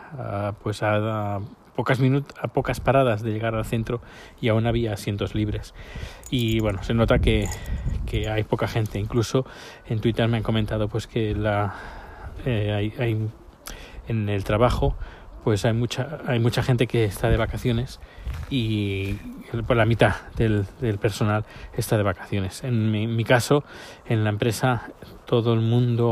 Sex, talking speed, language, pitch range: male, 165 wpm, Spanish, 110-130 Hz